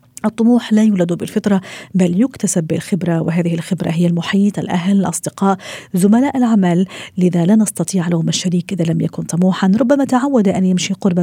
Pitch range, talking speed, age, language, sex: 175-225 Hz, 155 wpm, 40-59, Arabic, female